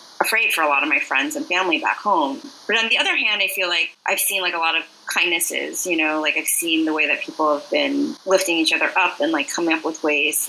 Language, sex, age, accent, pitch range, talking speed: English, female, 30-49, American, 160-215 Hz, 275 wpm